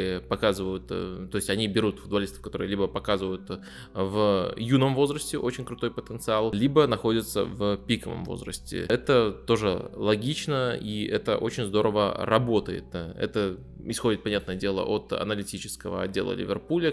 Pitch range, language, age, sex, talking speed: 100-130 Hz, Russian, 20-39, male, 130 wpm